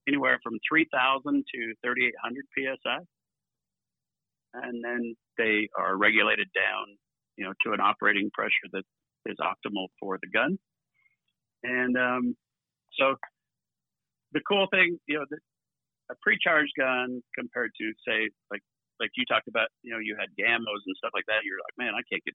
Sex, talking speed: male, 160 wpm